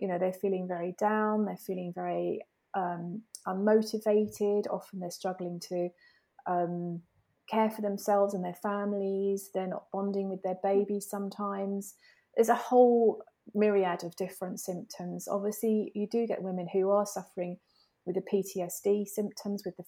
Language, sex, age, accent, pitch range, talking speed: English, female, 30-49, British, 180-210 Hz, 150 wpm